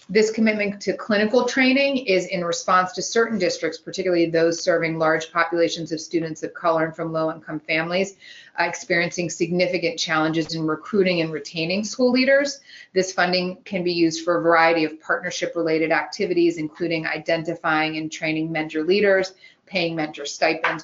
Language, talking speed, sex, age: English, 160 wpm, female, 30-49